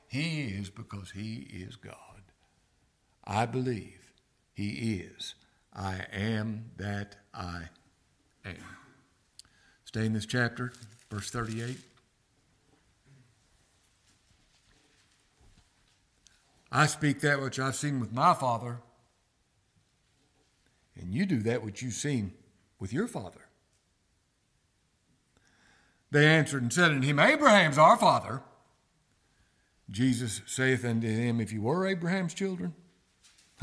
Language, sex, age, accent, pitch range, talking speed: English, male, 60-79, American, 105-150 Hz, 105 wpm